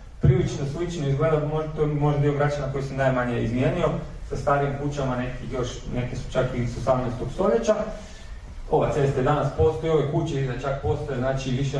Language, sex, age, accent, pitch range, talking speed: Croatian, male, 40-59, Serbian, 125-160 Hz, 165 wpm